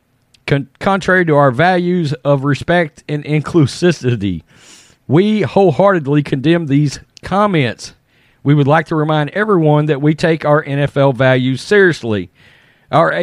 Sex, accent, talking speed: male, American, 120 wpm